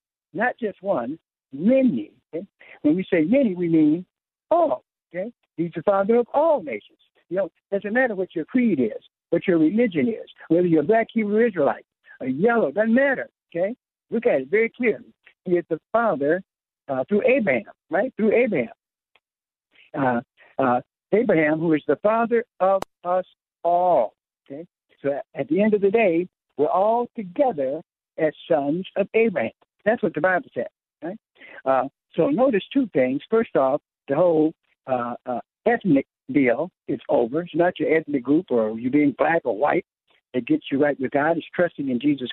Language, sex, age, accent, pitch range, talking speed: English, male, 60-79, American, 155-230 Hz, 175 wpm